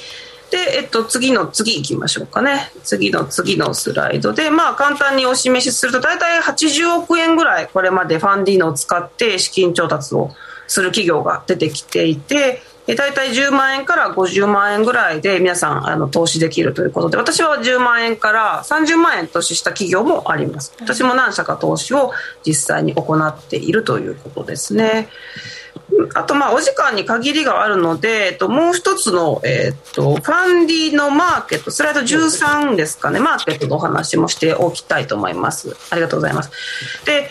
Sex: female